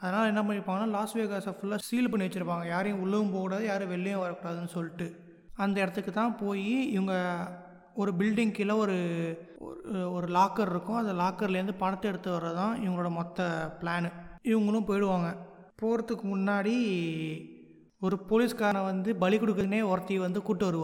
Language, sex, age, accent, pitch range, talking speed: Tamil, male, 20-39, native, 175-210 Hz, 135 wpm